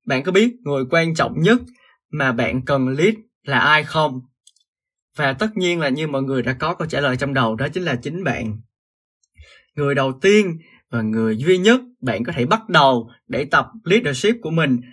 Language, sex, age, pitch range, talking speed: Vietnamese, male, 20-39, 130-180 Hz, 200 wpm